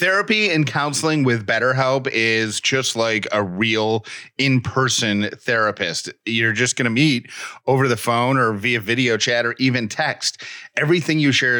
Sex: male